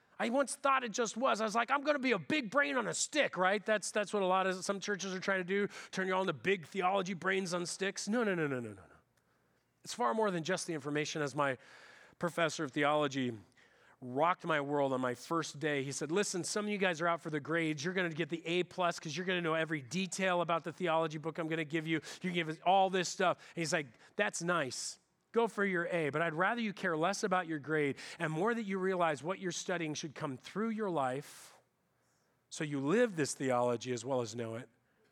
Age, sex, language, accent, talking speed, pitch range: 40-59, male, English, American, 255 wpm, 145-190 Hz